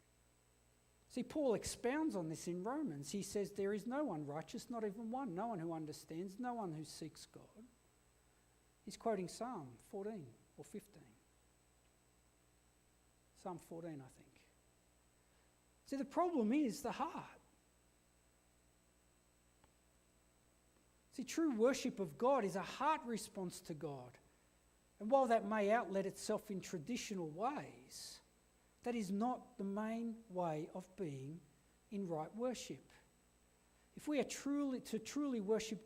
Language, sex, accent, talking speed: English, male, Australian, 135 wpm